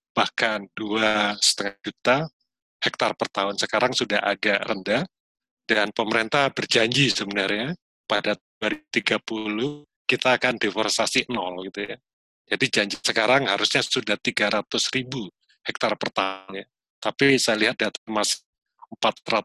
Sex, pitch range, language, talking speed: male, 105-120 Hz, Indonesian, 115 wpm